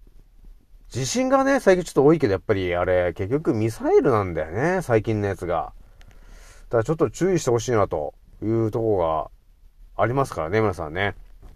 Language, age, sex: Japanese, 30-49, male